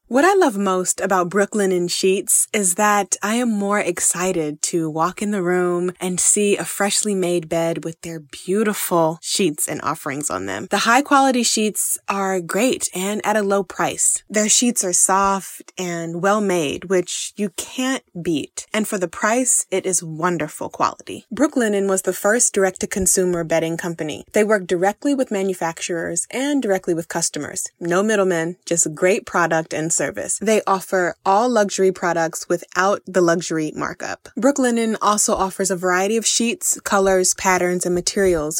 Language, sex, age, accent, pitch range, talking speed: English, female, 20-39, American, 175-205 Hz, 165 wpm